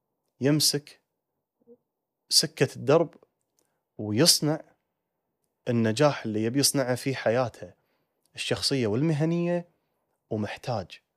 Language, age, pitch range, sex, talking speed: Arabic, 30-49, 110-150 Hz, male, 65 wpm